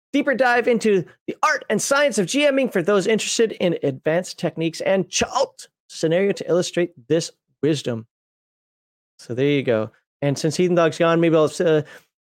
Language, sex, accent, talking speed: English, male, American, 170 wpm